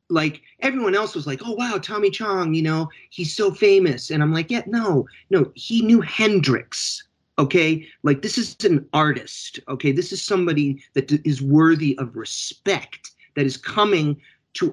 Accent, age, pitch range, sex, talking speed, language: American, 30-49, 130-160 Hz, male, 170 wpm, English